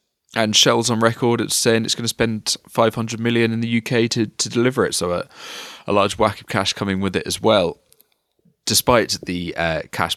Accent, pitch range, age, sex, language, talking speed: British, 80-110 Hz, 20-39, male, English, 205 wpm